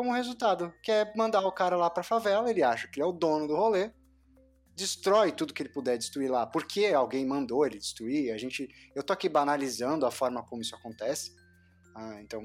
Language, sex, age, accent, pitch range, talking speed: Portuguese, male, 20-39, Brazilian, 115-170 Hz, 210 wpm